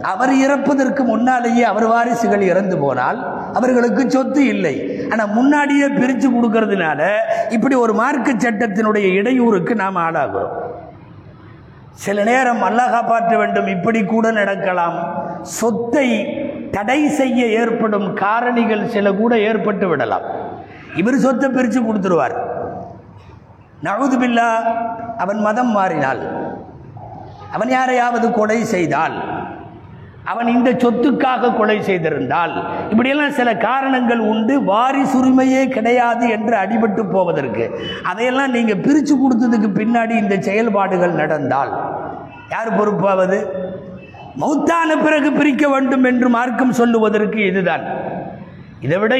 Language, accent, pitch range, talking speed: Tamil, native, 190-255 Hz, 100 wpm